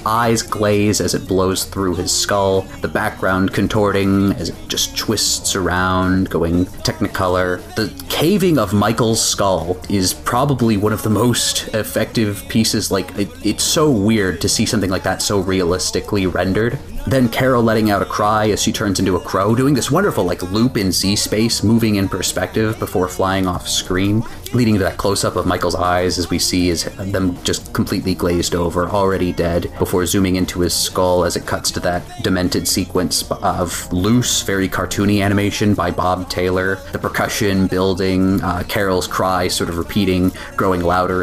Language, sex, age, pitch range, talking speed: English, male, 30-49, 90-105 Hz, 175 wpm